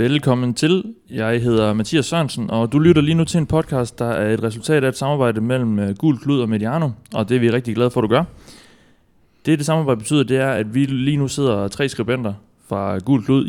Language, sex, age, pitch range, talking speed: Danish, male, 30-49, 110-135 Hz, 235 wpm